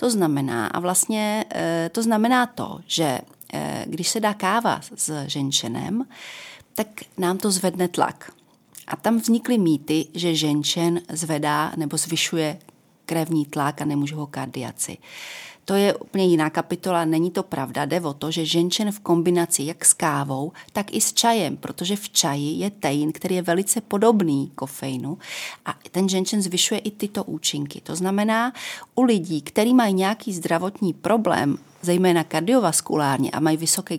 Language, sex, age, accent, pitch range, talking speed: Czech, female, 40-59, native, 155-195 Hz, 150 wpm